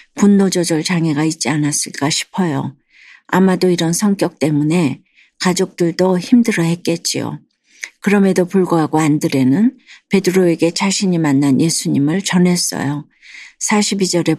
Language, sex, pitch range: Korean, female, 160-190 Hz